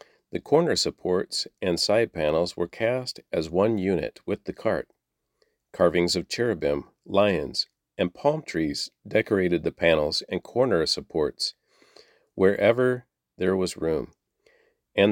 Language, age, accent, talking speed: English, 50-69, American, 125 wpm